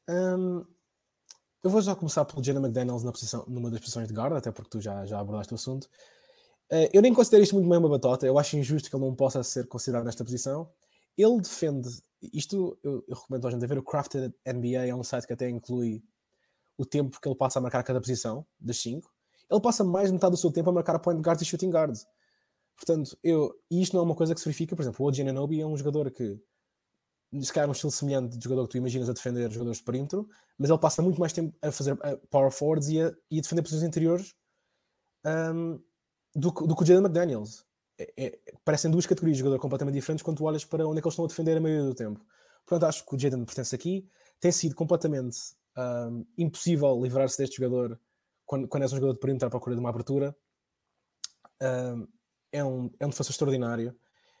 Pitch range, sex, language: 125-165 Hz, male, Portuguese